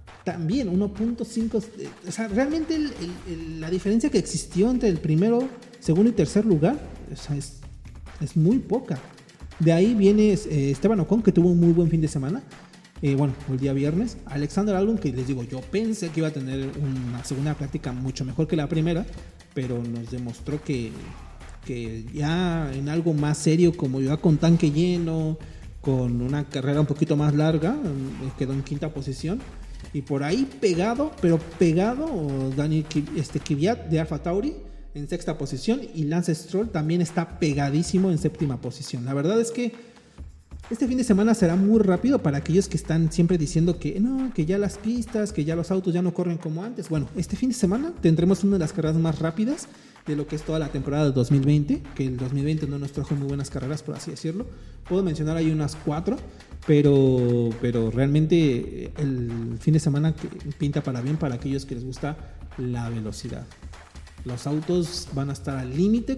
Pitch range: 140-185 Hz